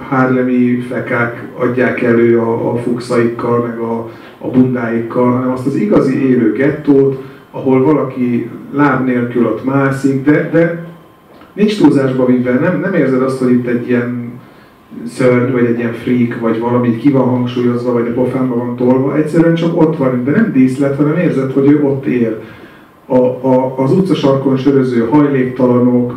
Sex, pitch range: male, 125-145 Hz